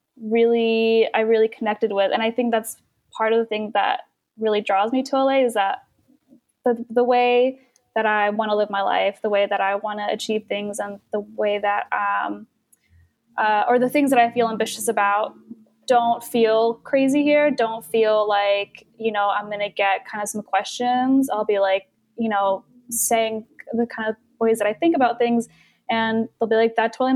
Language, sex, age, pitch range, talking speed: English, female, 10-29, 205-250 Hz, 200 wpm